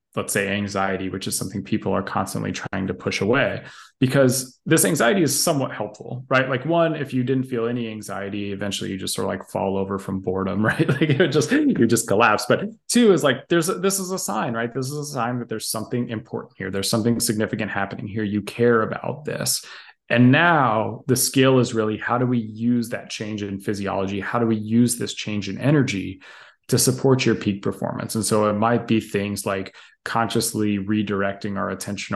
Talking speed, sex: 210 wpm, male